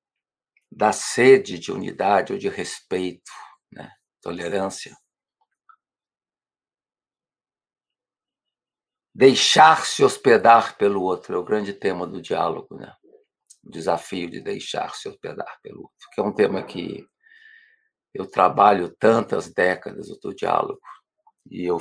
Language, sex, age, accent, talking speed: Portuguese, male, 50-69, Brazilian, 110 wpm